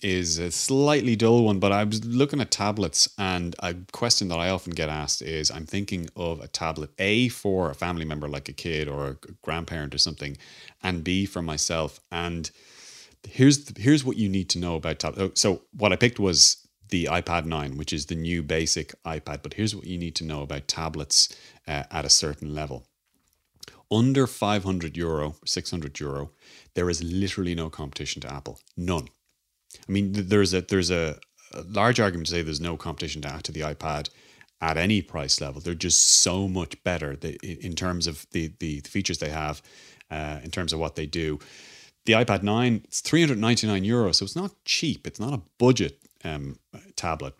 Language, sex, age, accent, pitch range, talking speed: English, male, 30-49, Irish, 75-95 Hz, 200 wpm